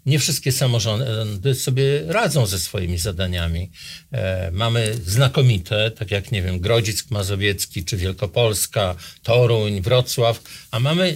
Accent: native